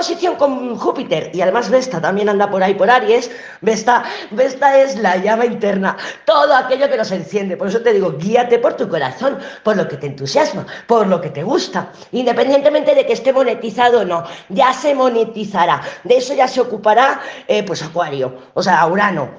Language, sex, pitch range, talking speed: Spanish, female, 185-255 Hz, 190 wpm